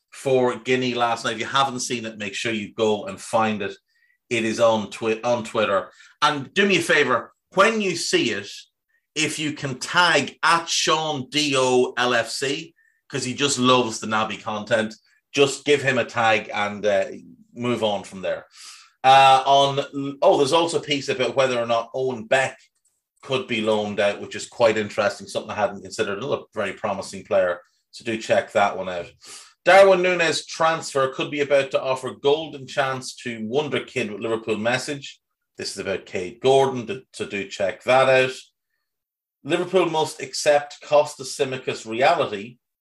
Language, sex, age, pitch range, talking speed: English, male, 30-49, 115-145 Hz, 170 wpm